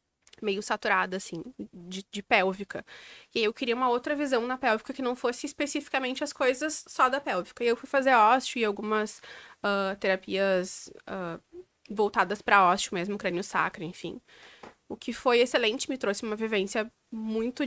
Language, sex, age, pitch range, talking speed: Portuguese, female, 20-39, 195-235 Hz, 165 wpm